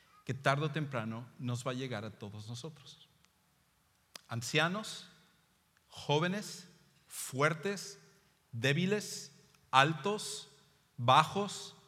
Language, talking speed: English, 80 wpm